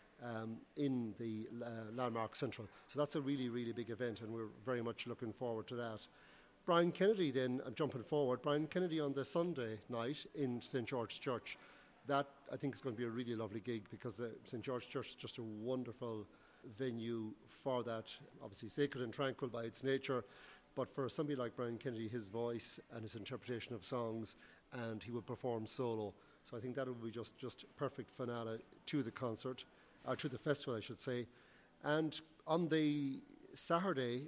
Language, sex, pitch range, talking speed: English, male, 115-140 Hz, 190 wpm